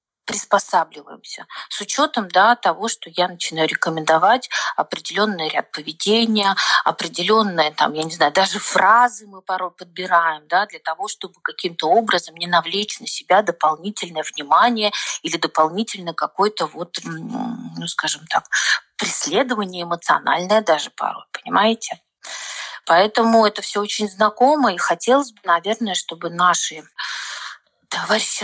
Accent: native